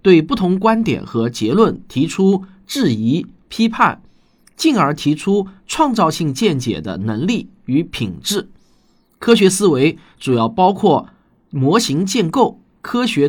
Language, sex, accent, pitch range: Chinese, male, native, 120-195 Hz